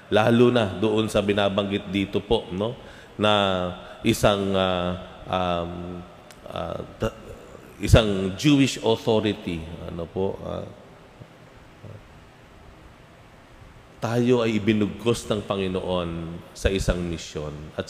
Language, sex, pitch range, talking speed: Filipino, male, 95-125 Hz, 95 wpm